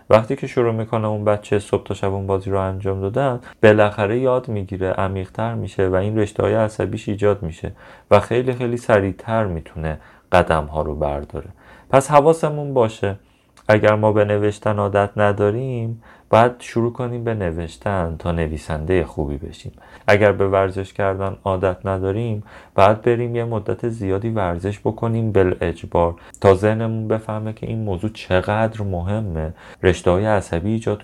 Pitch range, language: 90-110 Hz, Persian